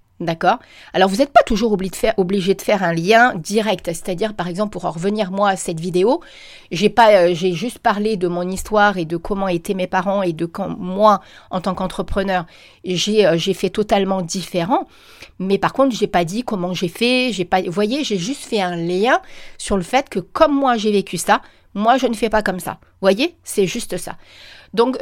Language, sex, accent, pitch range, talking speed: French, female, French, 185-225 Hz, 220 wpm